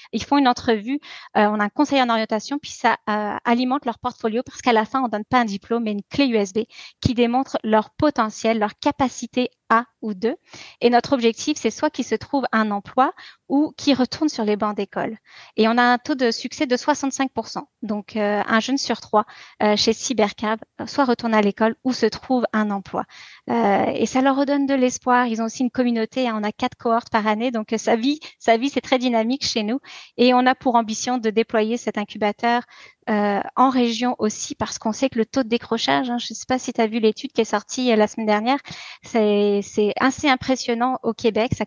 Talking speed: 225 wpm